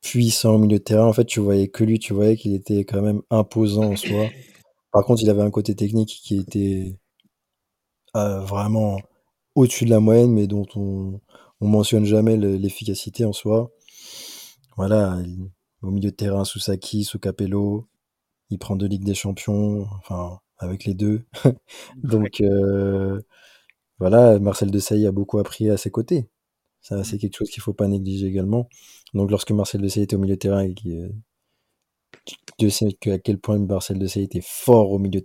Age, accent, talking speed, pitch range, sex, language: 20-39, French, 185 wpm, 95-110 Hz, male, French